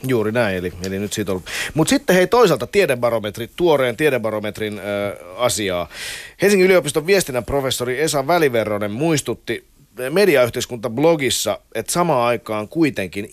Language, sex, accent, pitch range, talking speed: Finnish, male, native, 100-140 Hz, 115 wpm